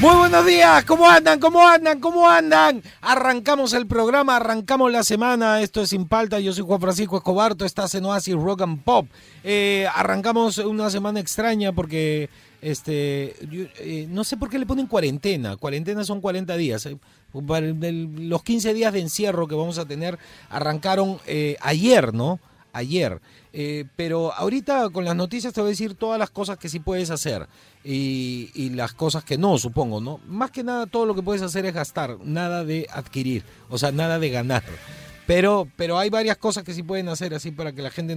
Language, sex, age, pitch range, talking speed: Spanish, male, 40-59, 145-205 Hz, 190 wpm